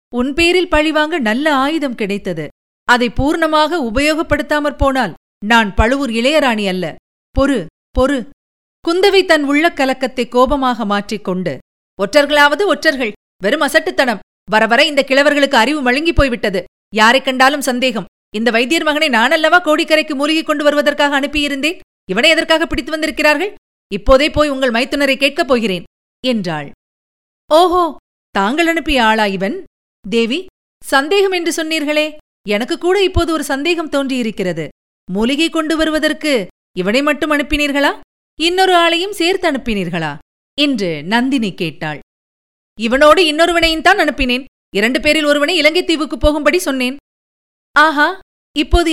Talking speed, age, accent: 115 wpm, 50-69, native